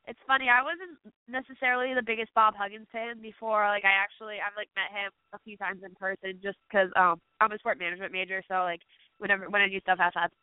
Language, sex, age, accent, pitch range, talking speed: English, female, 20-39, American, 195-230 Hz, 230 wpm